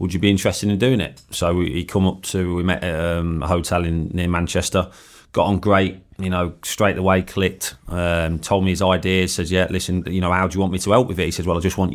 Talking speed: 265 wpm